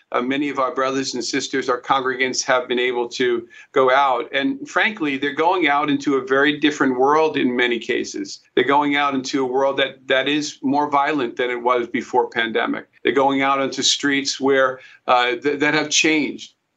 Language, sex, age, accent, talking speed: English, male, 50-69, American, 195 wpm